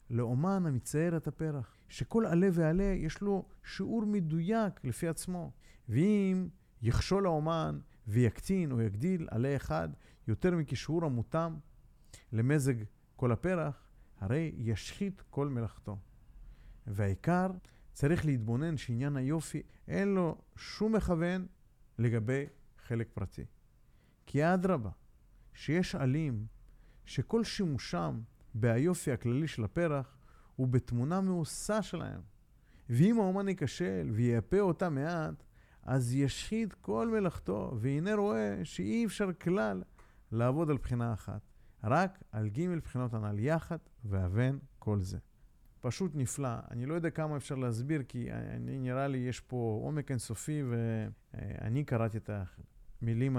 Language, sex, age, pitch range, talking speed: Hebrew, male, 50-69, 115-165 Hz, 115 wpm